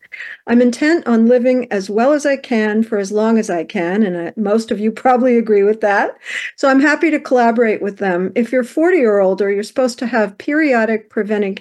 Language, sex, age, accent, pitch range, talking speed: English, female, 50-69, American, 190-250 Hz, 215 wpm